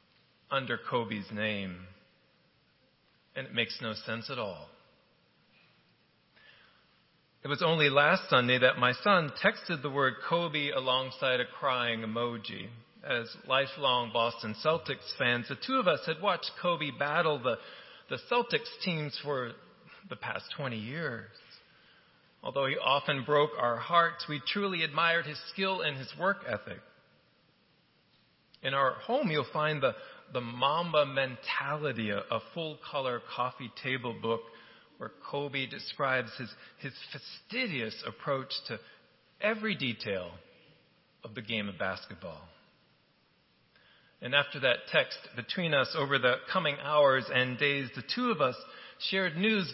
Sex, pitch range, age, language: male, 120-160 Hz, 40-59, English